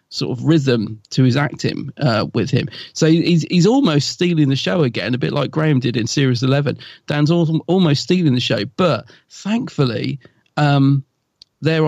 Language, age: English, 40-59